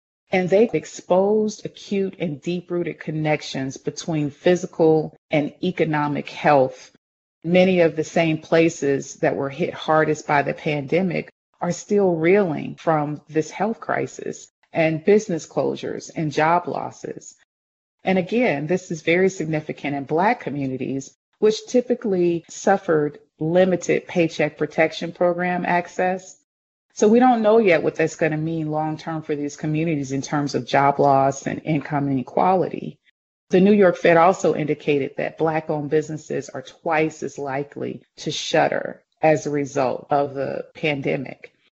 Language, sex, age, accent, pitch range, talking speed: English, female, 40-59, American, 150-180 Hz, 140 wpm